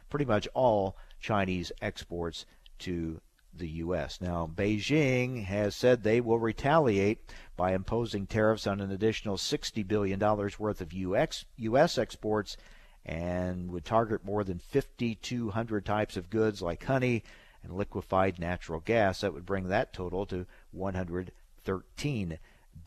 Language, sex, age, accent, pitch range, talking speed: English, male, 50-69, American, 95-120 Hz, 130 wpm